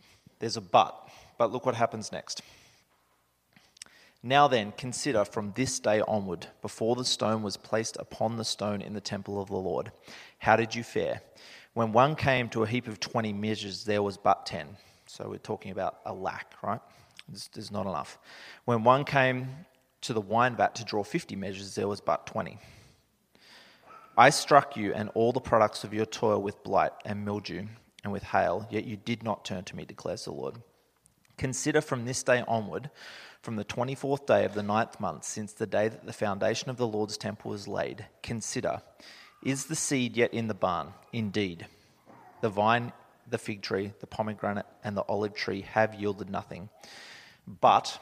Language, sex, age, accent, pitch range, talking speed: English, male, 30-49, Australian, 105-125 Hz, 185 wpm